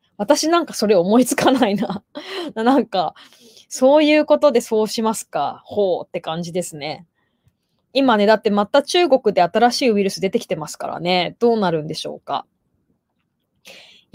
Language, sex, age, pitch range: Japanese, female, 20-39, 190-260 Hz